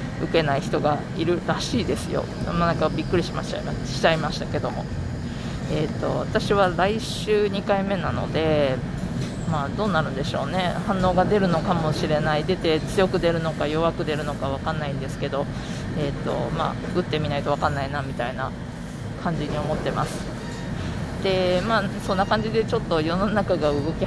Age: 20-39